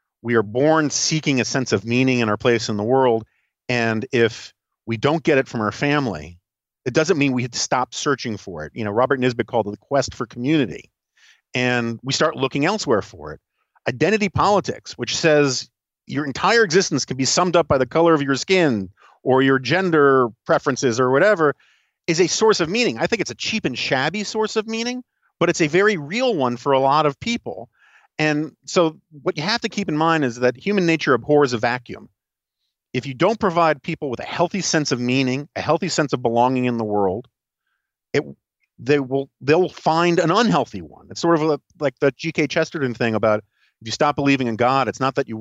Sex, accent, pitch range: male, American, 120-160 Hz